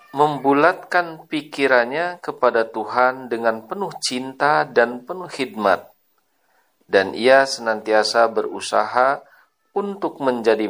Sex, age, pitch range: male, 50-69, 115-165 Hz